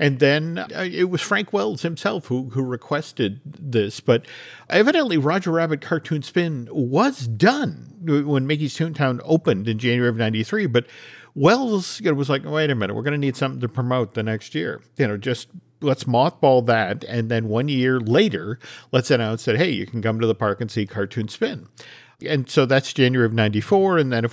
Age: 50-69